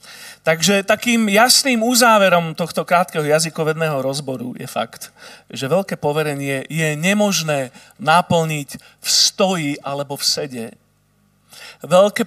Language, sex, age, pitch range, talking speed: Slovak, male, 40-59, 150-205 Hz, 110 wpm